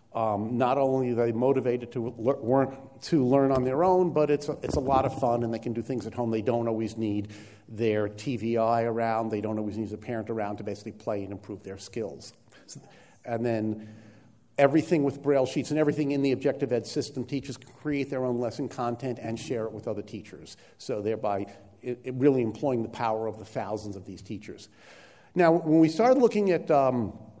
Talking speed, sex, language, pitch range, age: 200 wpm, male, English, 110-140 Hz, 50-69